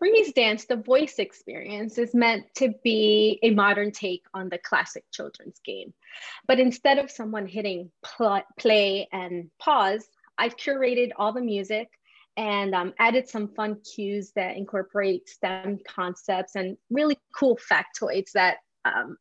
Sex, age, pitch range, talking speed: female, 30-49, 195-240 Hz, 145 wpm